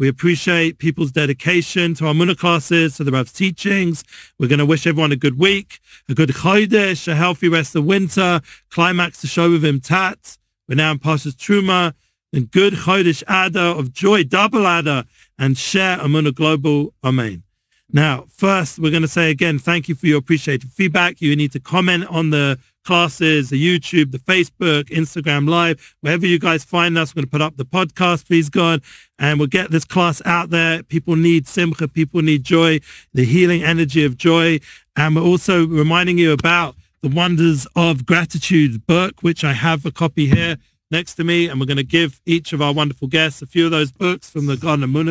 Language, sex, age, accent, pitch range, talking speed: English, male, 40-59, British, 150-175 Hz, 195 wpm